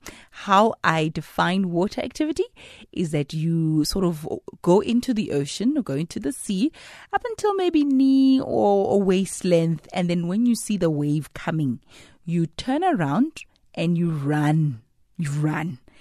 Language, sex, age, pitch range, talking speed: English, female, 30-49, 160-235 Hz, 155 wpm